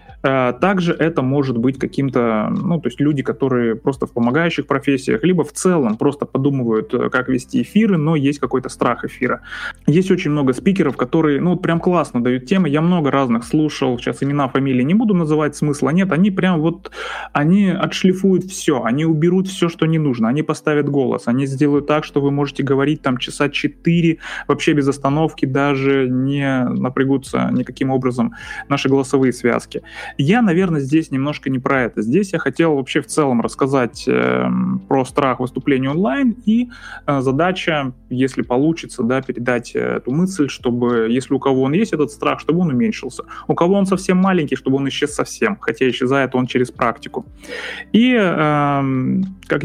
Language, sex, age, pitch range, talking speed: Russian, male, 20-39, 130-170 Hz, 170 wpm